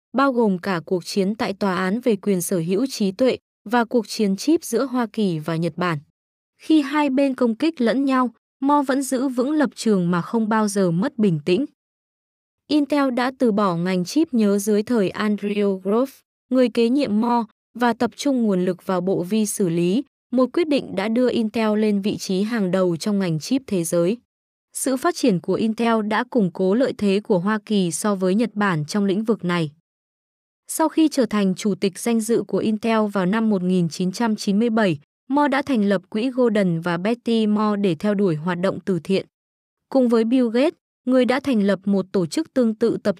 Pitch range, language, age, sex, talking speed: 190-245 Hz, Vietnamese, 20-39, female, 205 wpm